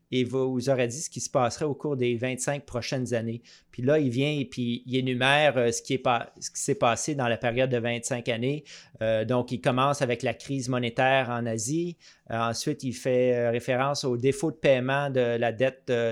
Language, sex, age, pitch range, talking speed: French, male, 30-49, 120-145 Hz, 225 wpm